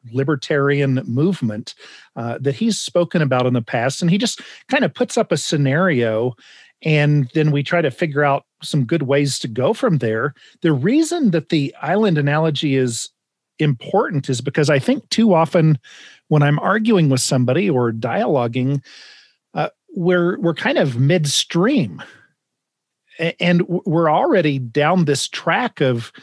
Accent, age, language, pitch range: American, 40-59, English, 135-180 Hz